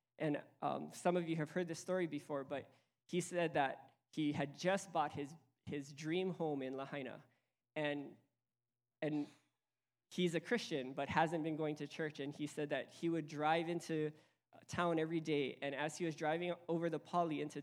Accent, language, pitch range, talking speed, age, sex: American, English, 145-175 Hz, 185 wpm, 20-39, male